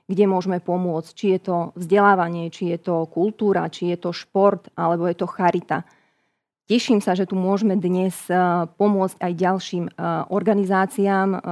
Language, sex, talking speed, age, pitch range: Slovak, female, 150 wpm, 20-39, 175-195 Hz